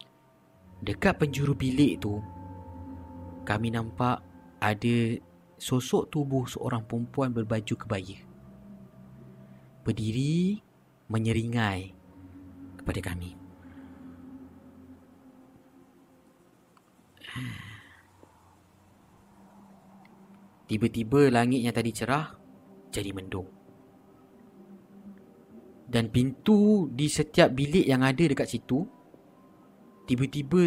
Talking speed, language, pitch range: 70 wpm, Malay, 95-130 Hz